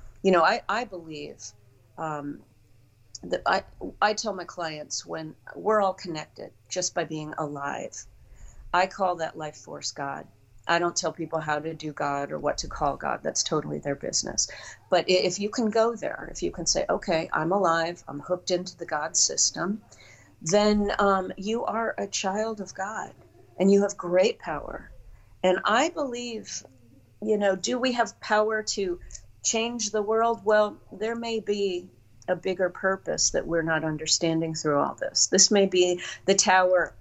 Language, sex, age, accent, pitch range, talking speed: English, female, 40-59, American, 145-195 Hz, 175 wpm